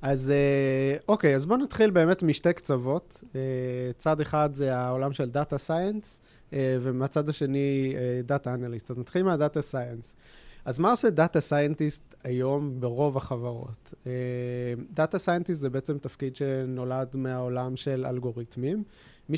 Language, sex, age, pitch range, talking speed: Hebrew, male, 20-39, 130-155 Hz, 130 wpm